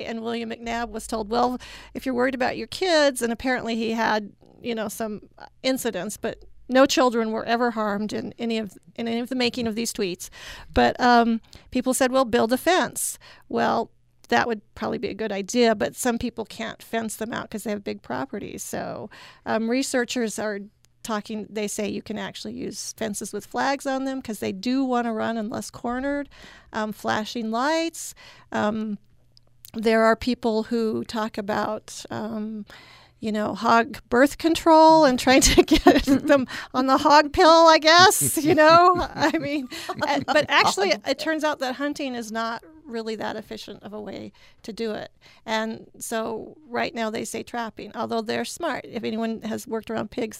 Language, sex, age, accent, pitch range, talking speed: English, female, 40-59, American, 220-270 Hz, 185 wpm